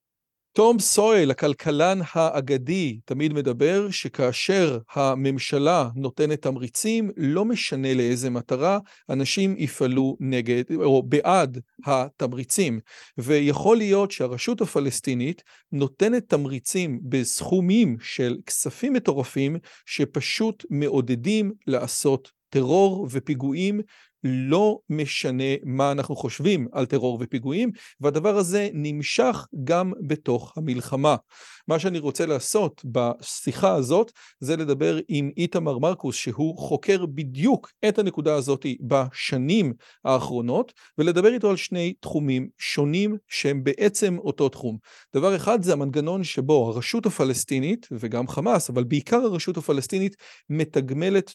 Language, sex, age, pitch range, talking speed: Hebrew, male, 40-59, 130-190 Hz, 110 wpm